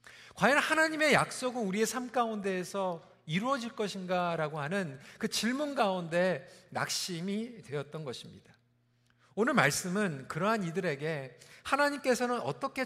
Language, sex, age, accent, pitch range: Korean, male, 40-59, native, 170-245 Hz